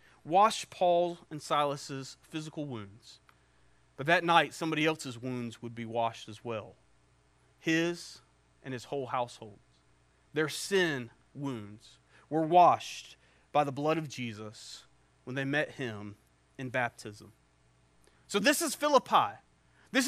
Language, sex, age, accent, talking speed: English, male, 30-49, American, 130 wpm